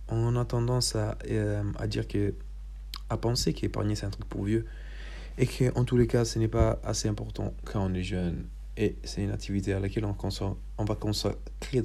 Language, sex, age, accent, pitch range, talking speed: Italian, male, 40-59, French, 85-110 Hz, 210 wpm